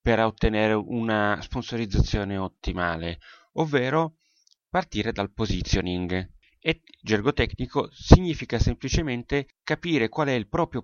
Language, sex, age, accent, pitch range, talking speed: Italian, male, 30-49, native, 100-120 Hz, 105 wpm